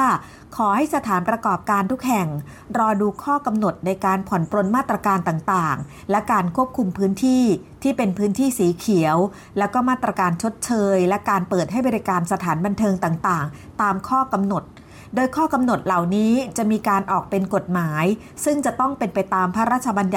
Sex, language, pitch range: female, Thai, 185-235 Hz